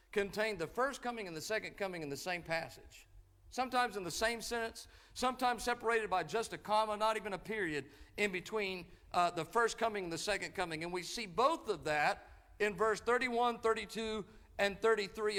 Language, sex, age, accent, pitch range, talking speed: English, male, 50-69, American, 180-235 Hz, 190 wpm